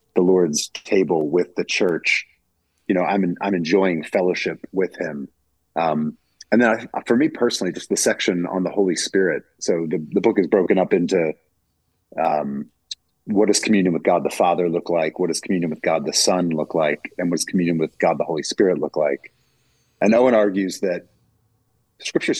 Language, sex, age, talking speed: English, male, 40-59, 190 wpm